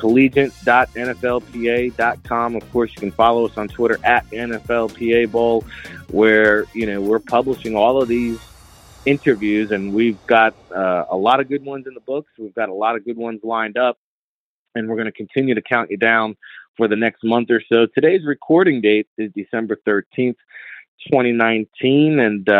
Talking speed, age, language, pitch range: 170 wpm, 30-49, English, 110-130 Hz